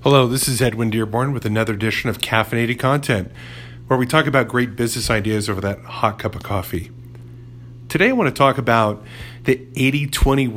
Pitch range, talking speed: 110-125 Hz, 180 wpm